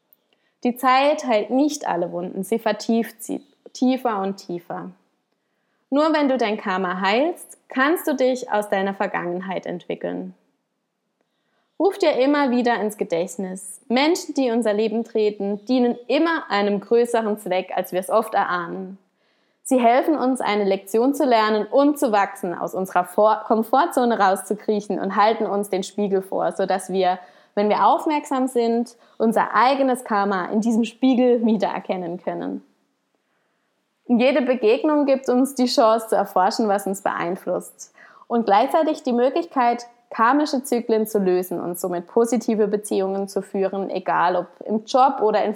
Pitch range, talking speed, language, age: 190-250 Hz, 145 wpm, German, 20-39